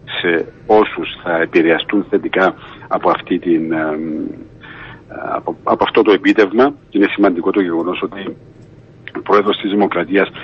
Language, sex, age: Greek, male, 50-69